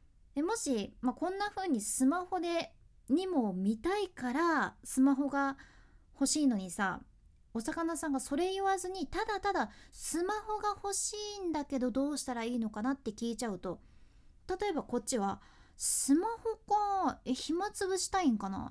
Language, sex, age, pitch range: Japanese, female, 20-39, 245-365 Hz